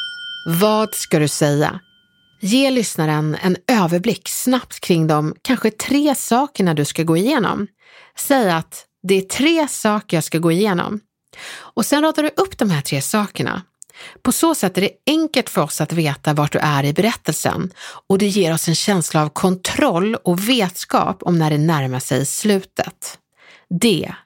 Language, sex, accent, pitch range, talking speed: Swedish, female, native, 170-250 Hz, 170 wpm